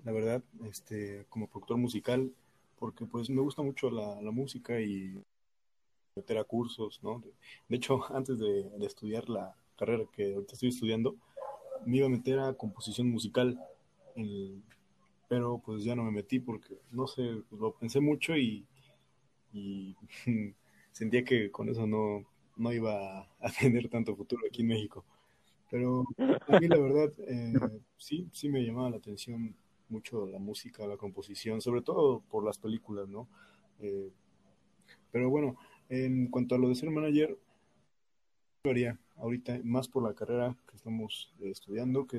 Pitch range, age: 105-130 Hz, 20-39